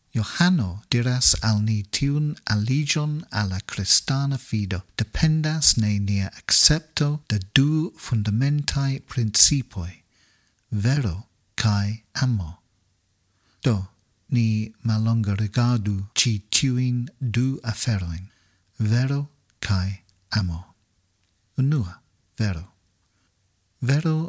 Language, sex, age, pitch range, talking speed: English, male, 50-69, 100-135 Hz, 80 wpm